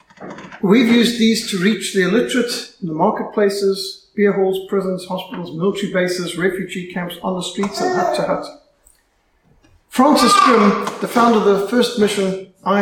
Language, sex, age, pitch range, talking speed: English, male, 60-79, 185-225 Hz, 160 wpm